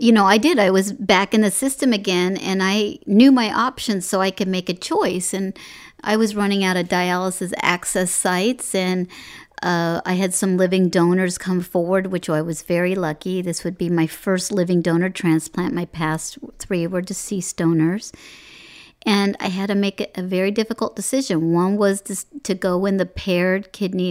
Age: 50-69